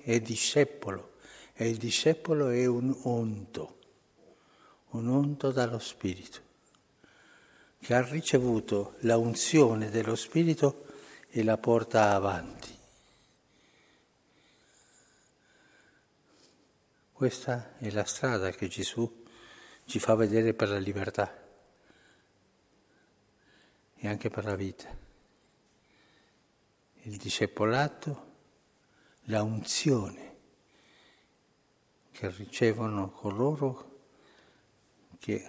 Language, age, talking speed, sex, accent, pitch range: Italian, 60-79, 80 wpm, male, native, 100-120 Hz